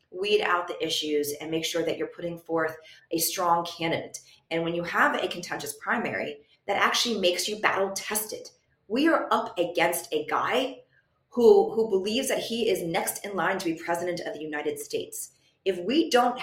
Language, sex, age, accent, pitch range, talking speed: English, female, 30-49, American, 165-230 Hz, 185 wpm